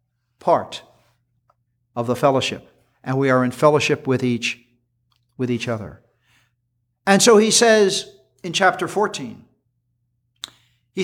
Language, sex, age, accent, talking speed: English, male, 50-69, American, 120 wpm